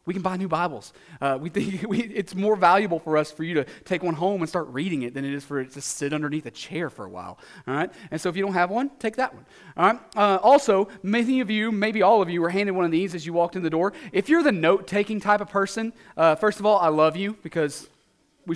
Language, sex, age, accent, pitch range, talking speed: English, male, 30-49, American, 165-200 Hz, 280 wpm